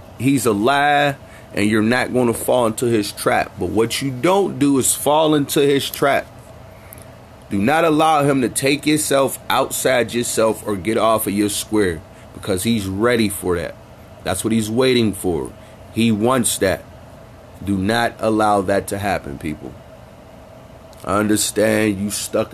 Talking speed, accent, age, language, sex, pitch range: 160 wpm, American, 30-49, English, male, 95-110 Hz